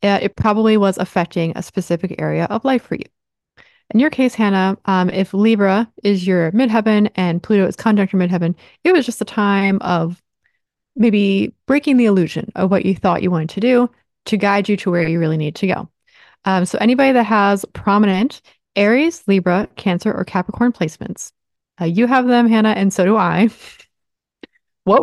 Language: English